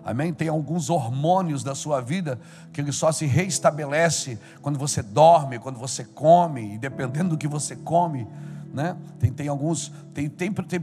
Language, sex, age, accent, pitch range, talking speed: Portuguese, male, 50-69, Brazilian, 155-200 Hz, 170 wpm